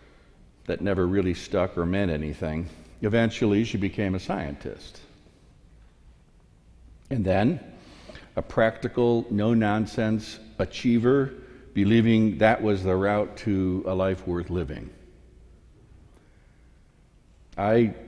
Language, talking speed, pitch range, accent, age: English, 95 wpm, 90-115 Hz, American, 60-79